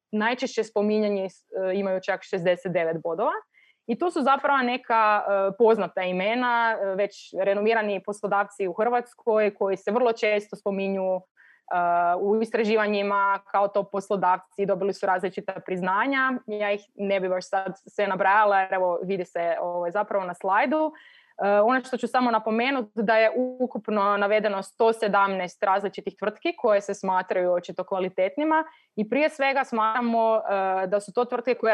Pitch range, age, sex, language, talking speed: 195-230 Hz, 20-39, female, Croatian, 140 wpm